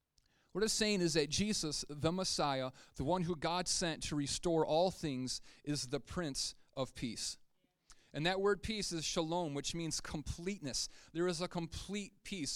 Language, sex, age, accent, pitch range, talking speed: English, male, 30-49, American, 155-190 Hz, 170 wpm